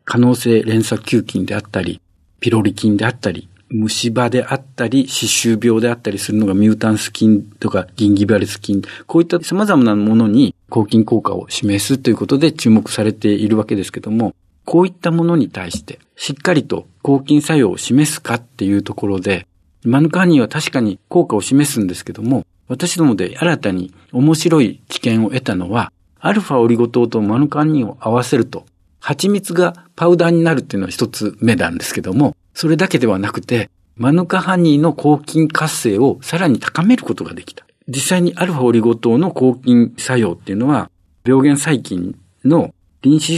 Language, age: Japanese, 50-69